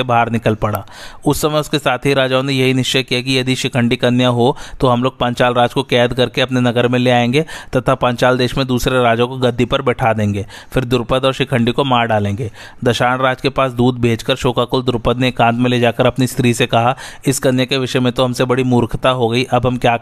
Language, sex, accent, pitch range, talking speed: Hindi, male, native, 120-130 Hz, 80 wpm